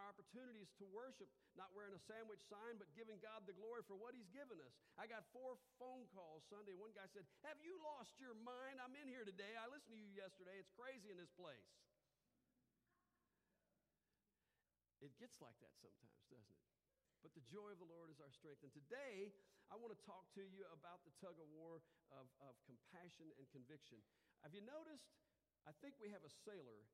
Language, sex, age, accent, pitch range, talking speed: English, male, 50-69, American, 145-205 Hz, 195 wpm